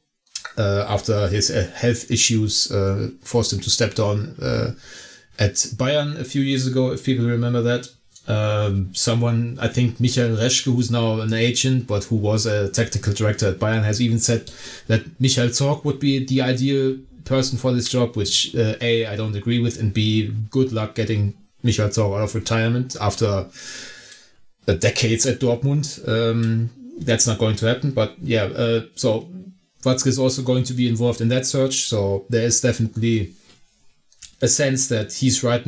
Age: 30-49